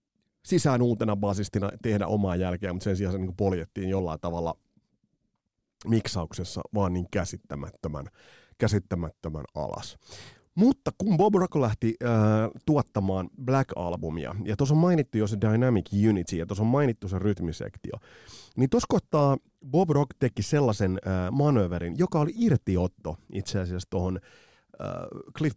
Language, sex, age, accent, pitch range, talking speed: Finnish, male, 30-49, native, 95-135 Hz, 135 wpm